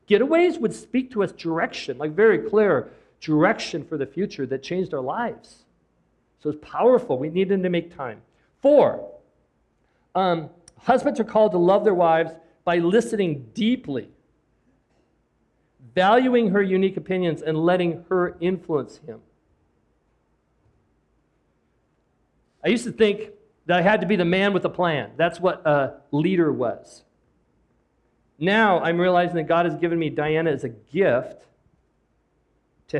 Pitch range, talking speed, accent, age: 145-200 Hz, 145 wpm, American, 50-69